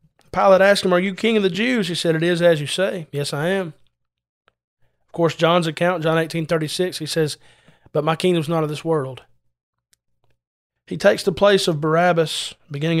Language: English